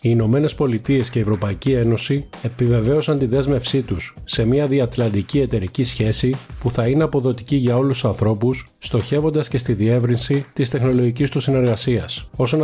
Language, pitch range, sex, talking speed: Greek, 115-135 Hz, male, 155 wpm